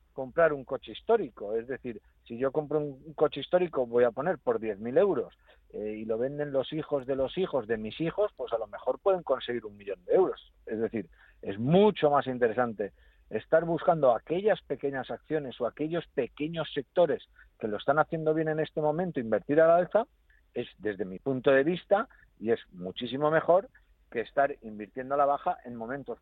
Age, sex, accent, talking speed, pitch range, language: 50-69, male, Spanish, 195 wpm, 125-165 Hz, Spanish